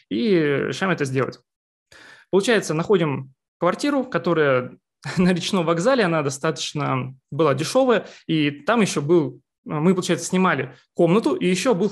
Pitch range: 150-200 Hz